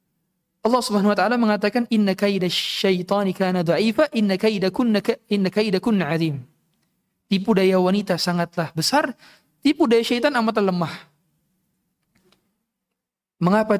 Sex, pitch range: male, 165-210 Hz